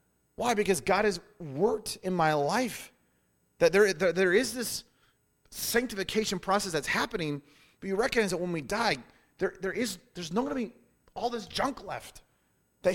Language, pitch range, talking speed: English, 165-235 Hz, 170 wpm